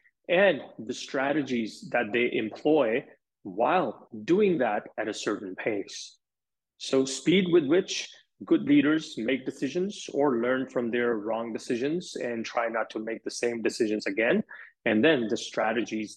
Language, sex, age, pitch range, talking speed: English, male, 30-49, 115-160 Hz, 150 wpm